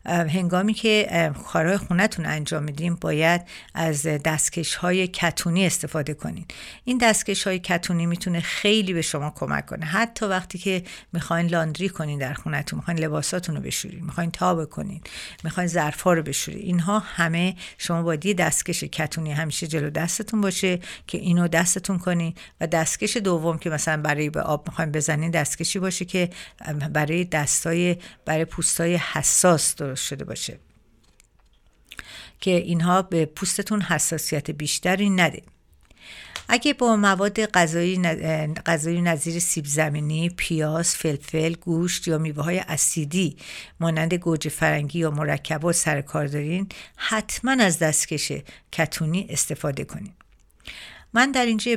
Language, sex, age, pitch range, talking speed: Persian, female, 50-69, 155-185 Hz, 130 wpm